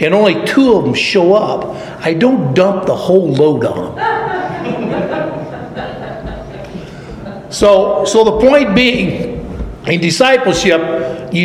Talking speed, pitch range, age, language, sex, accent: 120 wpm, 165-220 Hz, 60-79, English, male, American